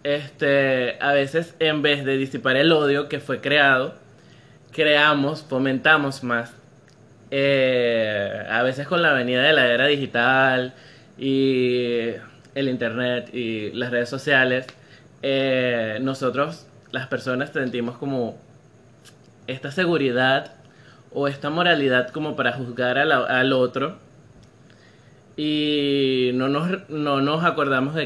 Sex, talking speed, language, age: male, 115 wpm, Spanish, 20-39